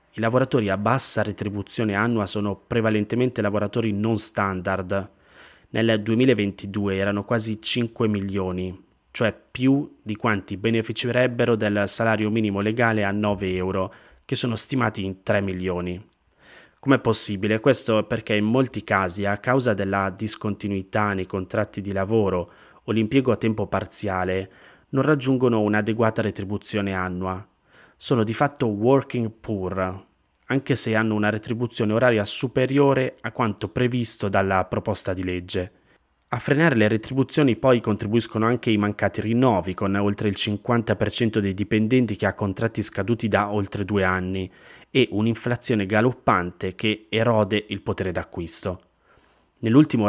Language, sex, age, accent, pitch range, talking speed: Italian, male, 20-39, native, 100-115 Hz, 135 wpm